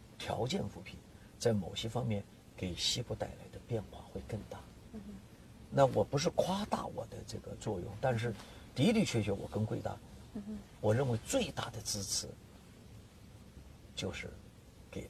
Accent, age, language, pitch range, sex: native, 50-69, Chinese, 100-115 Hz, male